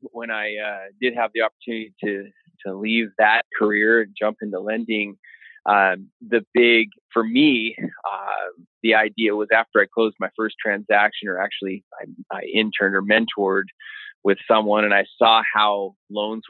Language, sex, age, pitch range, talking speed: English, male, 30-49, 100-115 Hz, 165 wpm